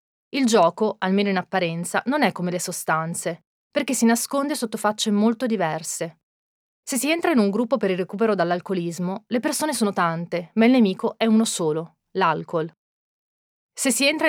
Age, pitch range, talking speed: 30-49, 185-235 Hz, 170 wpm